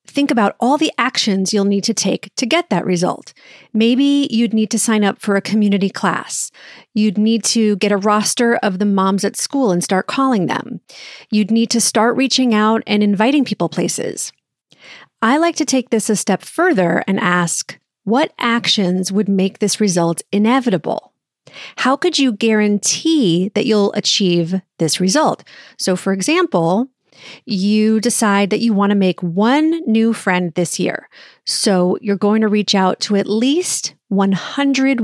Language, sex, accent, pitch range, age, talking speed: English, female, American, 195-245 Hz, 30-49, 170 wpm